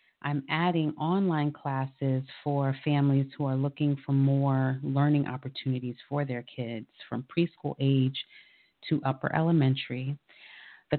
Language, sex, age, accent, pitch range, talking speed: English, female, 30-49, American, 135-150 Hz, 125 wpm